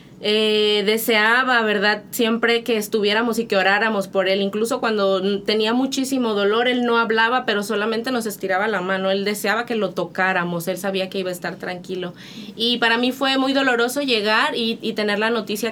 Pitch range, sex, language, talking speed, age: 195-240 Hz, female, English, 185 wpm, 20-39